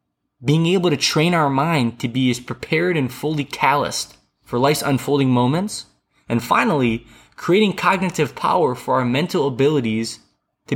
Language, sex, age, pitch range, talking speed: English, male, 20-39, 125-160 Hz, 150 wpm